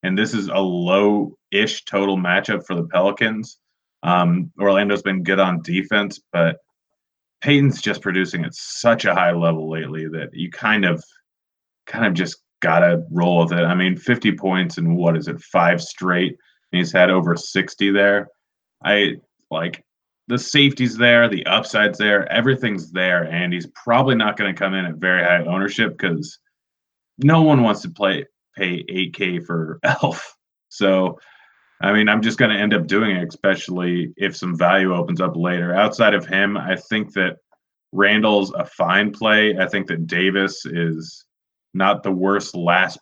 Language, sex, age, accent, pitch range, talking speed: English, male, 30-49, American, 85-100 Hz, 170 wpm